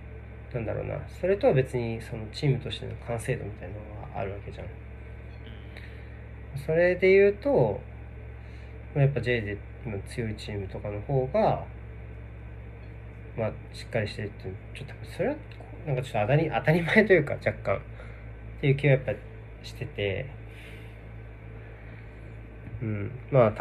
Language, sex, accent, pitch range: Japanese, male, native, 110-120 Hz